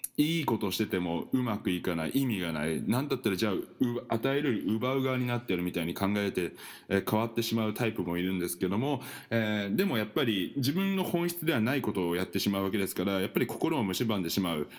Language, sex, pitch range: Japanese, male, 95-145 Hz